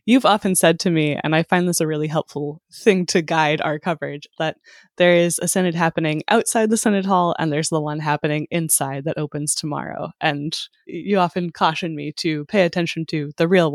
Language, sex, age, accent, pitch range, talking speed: English, female, 10-29, American, 155-185 Hz, 205 wpm